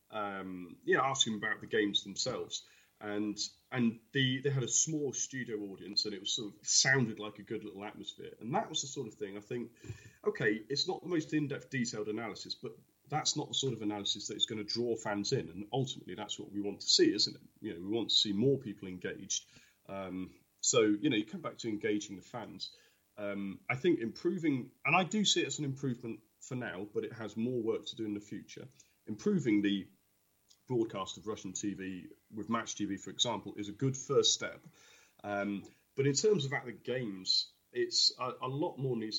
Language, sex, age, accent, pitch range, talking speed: English, male, 30-49, British, 100-155 Hz, 220 wpm